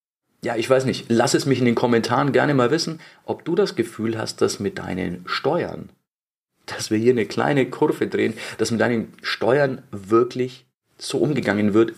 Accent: German